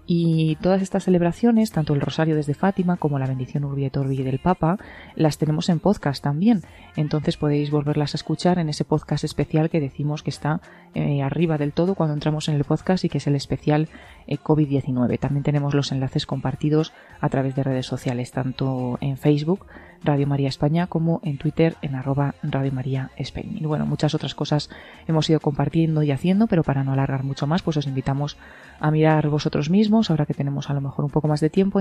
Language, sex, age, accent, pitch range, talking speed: Spanish, female, 20-39, Spanish, 140-160 Hz, 205 wpm